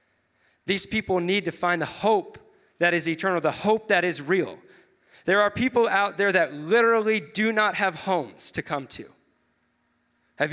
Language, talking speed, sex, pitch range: English, 170 wpm, male, 160-200 Hz